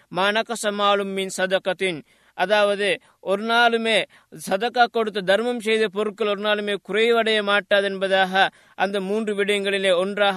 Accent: native